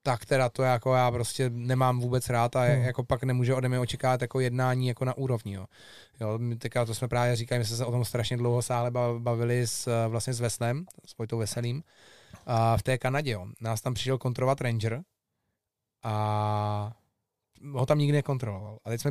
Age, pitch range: 20-39, 120-170 Hz